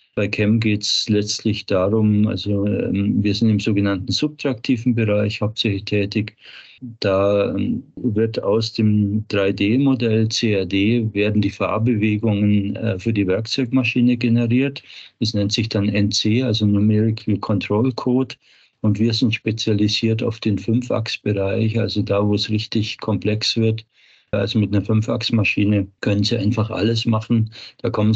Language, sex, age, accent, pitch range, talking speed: German, male, 50-69, German, 100-115 Hz, 130 wpm